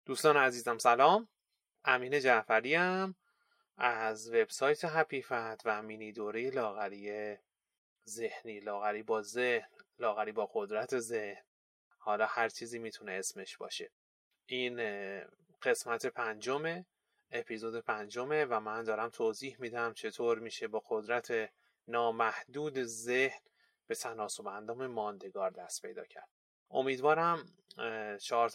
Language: Persian